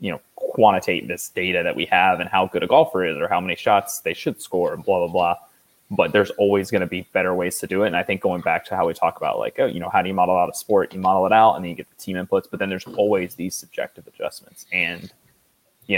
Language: English